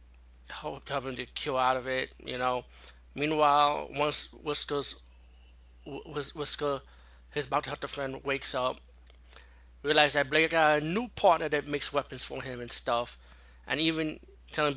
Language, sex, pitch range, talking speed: English, male, 120-150 Hz, 160 wpm